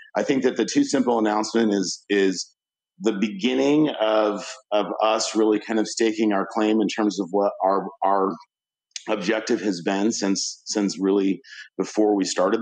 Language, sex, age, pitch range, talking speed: English, male, 40-59, 95-110 Hz, 165 wpm